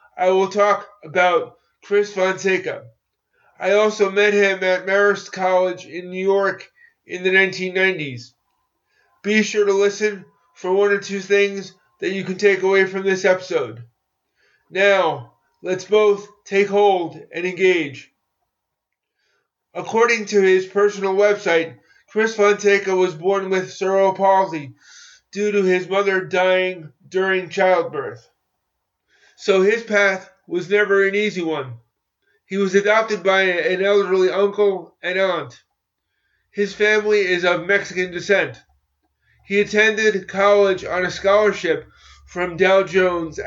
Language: English